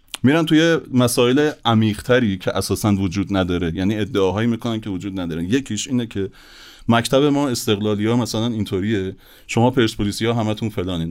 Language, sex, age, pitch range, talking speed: Persian, male, 30-49, 105-140 Hz, 150 wpm